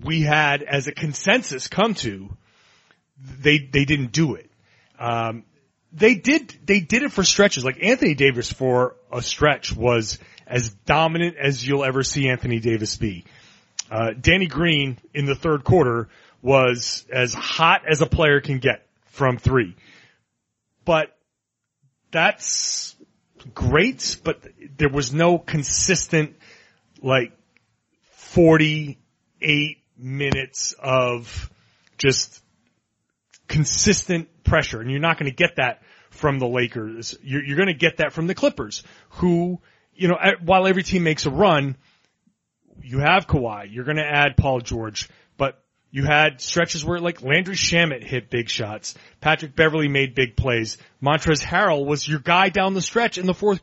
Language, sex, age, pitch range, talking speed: English, male, 30-49, 125-170 Hz, 150 wpm